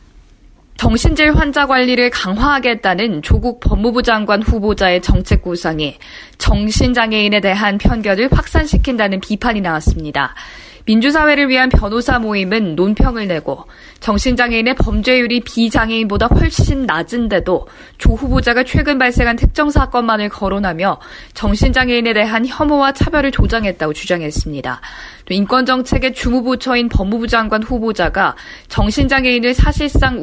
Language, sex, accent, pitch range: Korean, female, native, 195-250 Hz